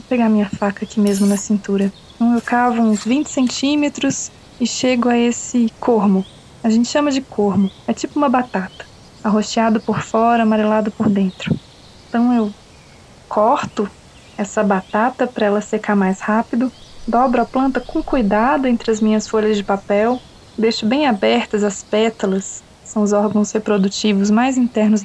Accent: Brazilian